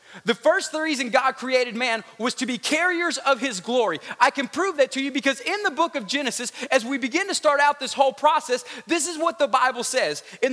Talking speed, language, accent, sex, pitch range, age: 235 wpm, English, American, male, 245-300 Hz, 30-49